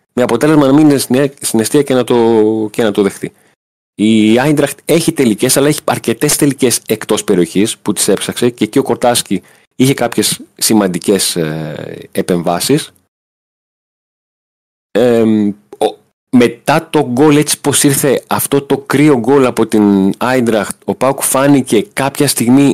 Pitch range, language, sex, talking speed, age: 105-140 Hz, Greek, male, 140 wpm, 30-49